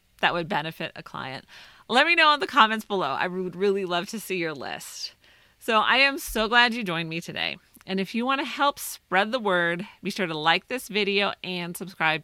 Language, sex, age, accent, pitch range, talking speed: English, female, 30-49, American, 175-230 Hz, 225 wpm